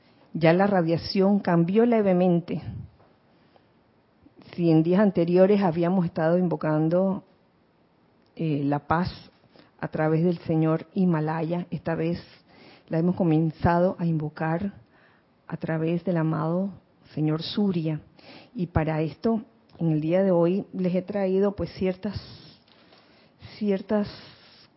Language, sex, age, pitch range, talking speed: Spanish, female, 40-59, 160-190 Hz, 115 wpm